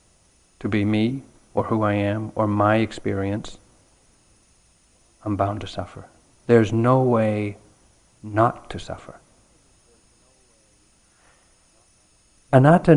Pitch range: 100-120 Hz